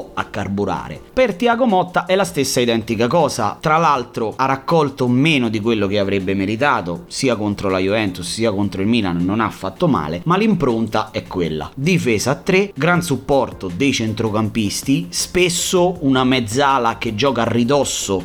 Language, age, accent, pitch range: Italian, 30-49, native, 105-175 Hz